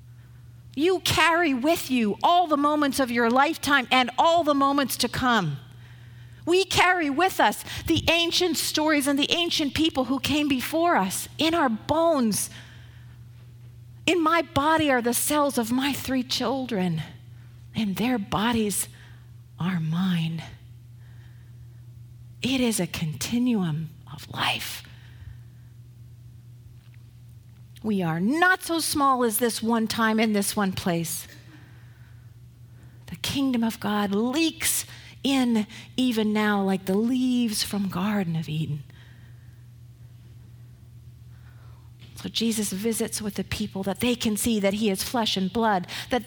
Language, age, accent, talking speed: Italian, 50-69, American, 130 wpm